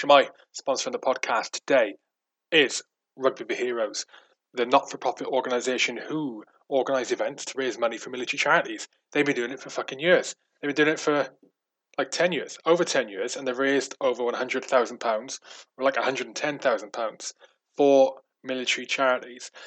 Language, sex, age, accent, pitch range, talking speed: English, male, 20-39, British, 125-145 Hz, 155 wpm